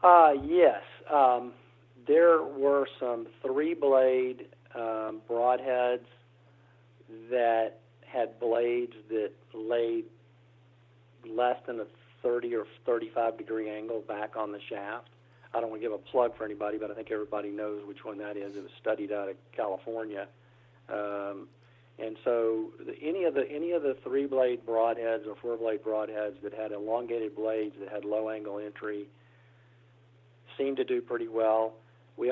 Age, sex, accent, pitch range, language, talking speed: 50-69, male, American, 105-120 Hz, English, 140 wpm